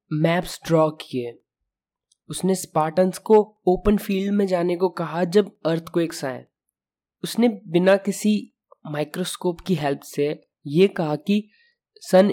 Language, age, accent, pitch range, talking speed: Hindi, 20-39, native, 145-185 Hz, 125 wpm